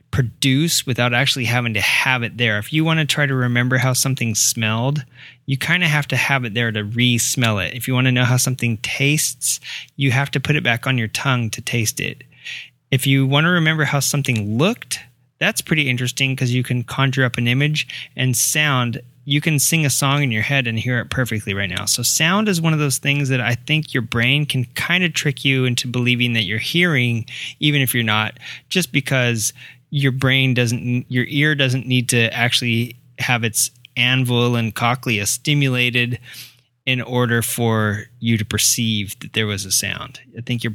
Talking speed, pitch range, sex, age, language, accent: 205 wpm, 120-140 Hz, male, 30-49, English, American